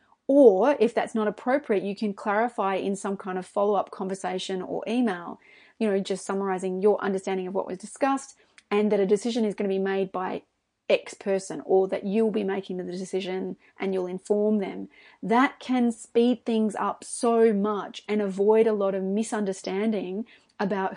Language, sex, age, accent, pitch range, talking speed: English, female, 30-49, Australian, 195-240 Hz, 180 wpm